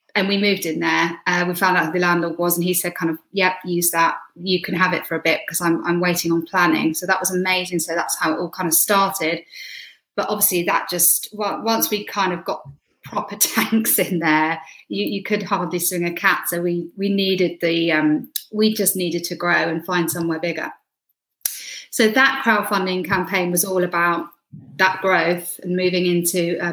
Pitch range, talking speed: 175-205 Hz, 215 wpm